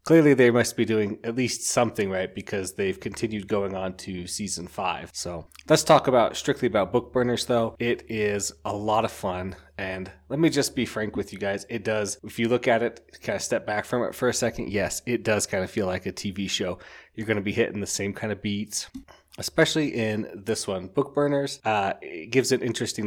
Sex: male